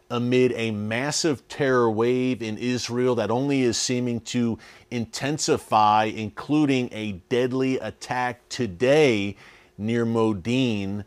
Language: English